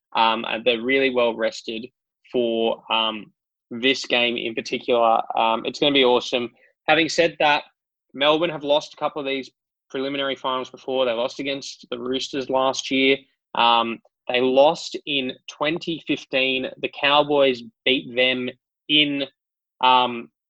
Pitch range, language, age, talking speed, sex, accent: 120-135 Hz, English, 20-39, 145 wpm, male, Australian